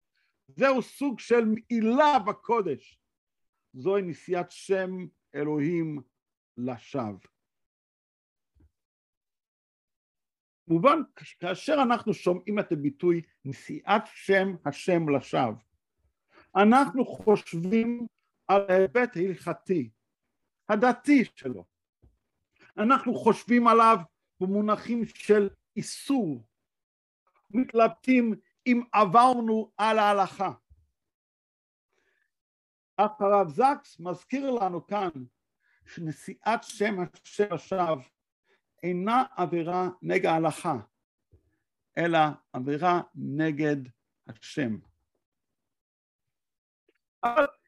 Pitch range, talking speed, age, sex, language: 155-230 Hz, 70 wpm, 50-69, male, Hebrew